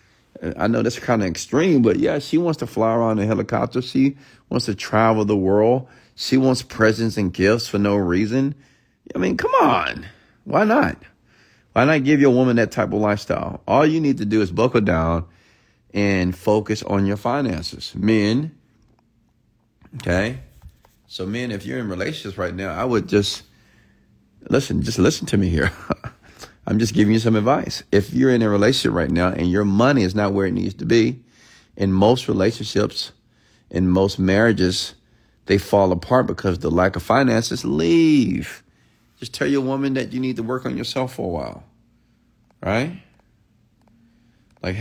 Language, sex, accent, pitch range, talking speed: English, male, American, 105-130 Hz, 175 wpm